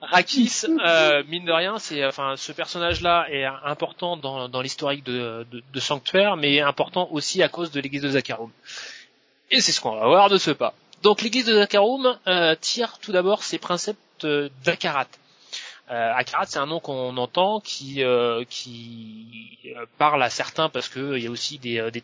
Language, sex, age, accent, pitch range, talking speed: French, male, 20-39, French, 130-175 Hz, 185 wpm